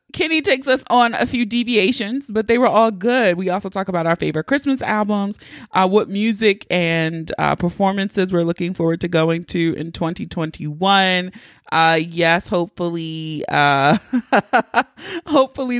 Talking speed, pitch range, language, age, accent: 150 wpm, 170-220 Hz, English, 30-49, American